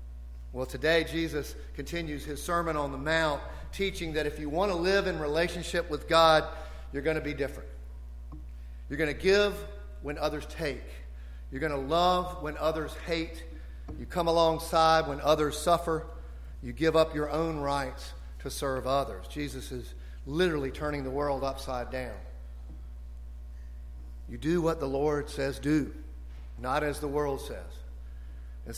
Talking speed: 155 wpm